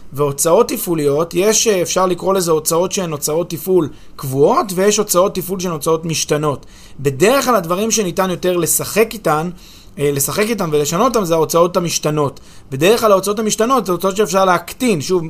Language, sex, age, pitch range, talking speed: Hebrew, male, 20-39, 155-205 Hz, 155 wpm